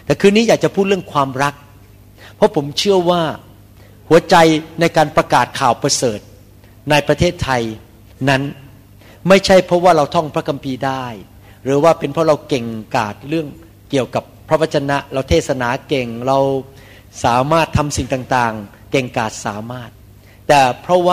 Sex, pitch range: male, 110-165 Hz